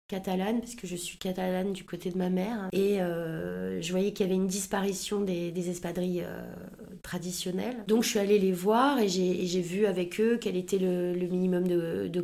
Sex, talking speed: female, 220 wpm